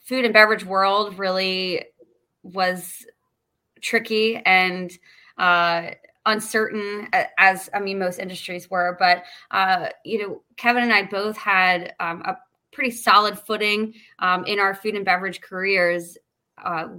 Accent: American